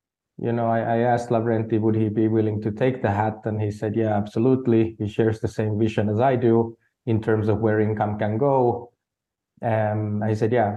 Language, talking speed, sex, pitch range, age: English, 205 wpm, male, 110-120 Hz, 30-49